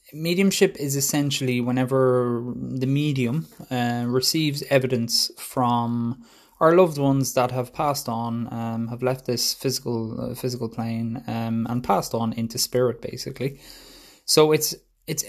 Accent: Irish